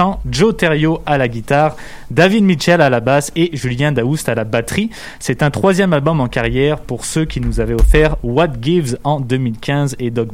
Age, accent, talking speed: 20-39, French, 195 wpm